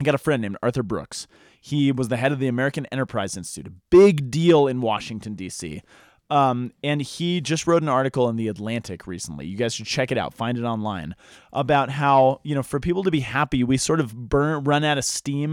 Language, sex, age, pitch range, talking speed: English, male, 20-39, 120-175 Hz, 230 wpm